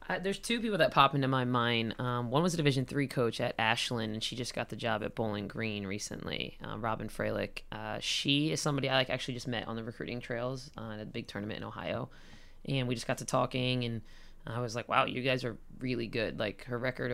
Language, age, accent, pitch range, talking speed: English, 20-39, American, 115-130 Hz, 245 wpm